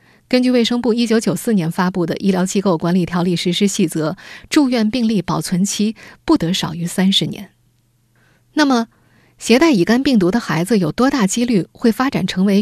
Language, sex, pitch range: Chinese, female, 175-235 Hz